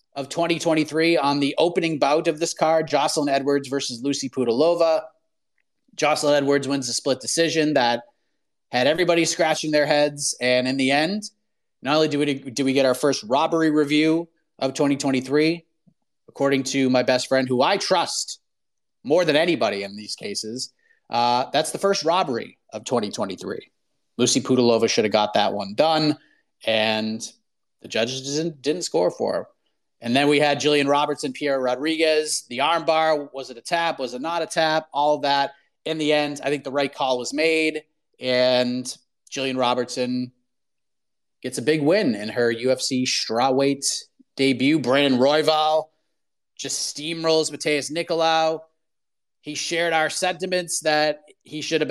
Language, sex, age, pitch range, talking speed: English, male, 30-49, 135-160 Hz, 155 wpm